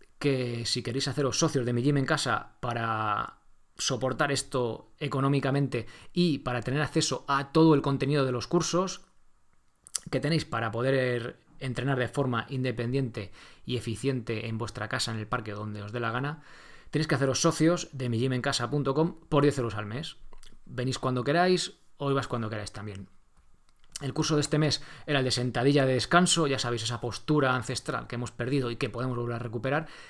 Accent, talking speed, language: Spanish, 185 wpm, Spanish